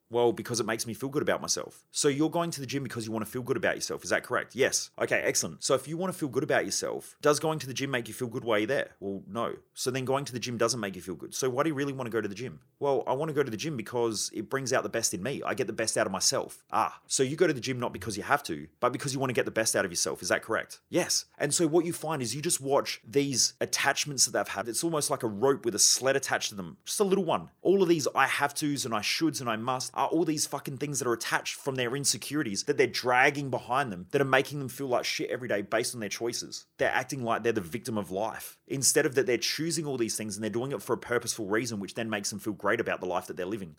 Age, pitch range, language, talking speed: 30-49, 105-140 Hz, English, 315 wpm